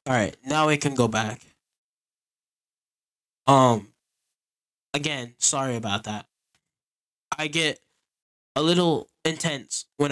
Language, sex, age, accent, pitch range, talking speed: English, male, 10-29, American, 130-170 Hz, 100 wpm